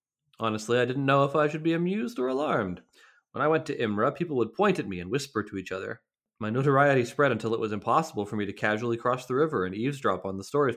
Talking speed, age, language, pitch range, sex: 250 wpm, 30-49, English, 105-150 Hz, male